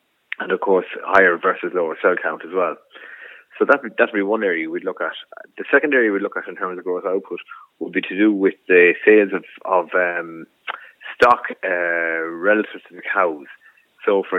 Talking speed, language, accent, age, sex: 200 wpm, English, Irish, 20-39, male